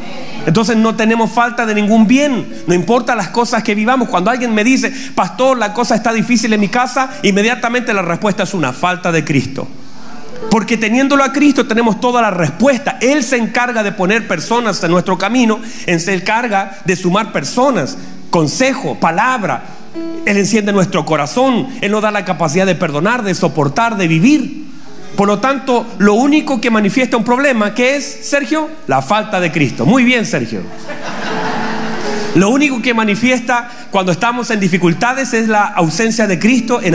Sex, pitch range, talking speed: male, 195-245 Hz, 170 wpm